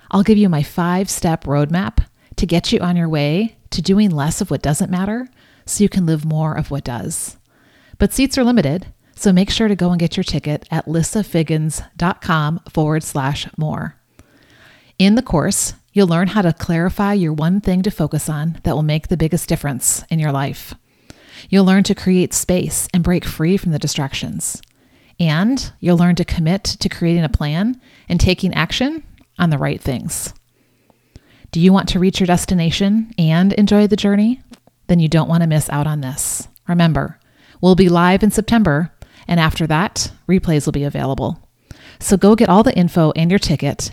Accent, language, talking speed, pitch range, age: American, English, 185 wpm, 150-195 Hz, 40-59